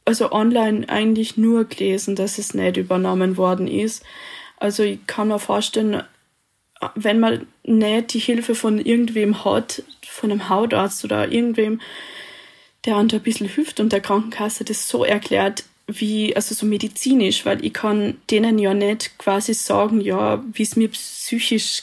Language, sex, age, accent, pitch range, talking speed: German, female, 20-39, German, 205-225 Hz, 155 wpm